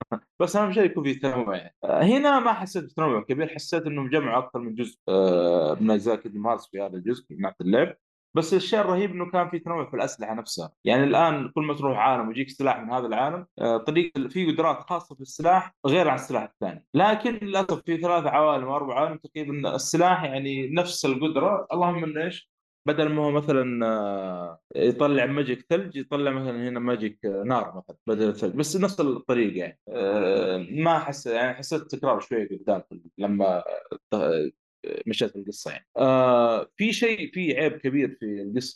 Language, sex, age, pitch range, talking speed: Arabic, male, 20-39, 115-160 Hz, 170 wpm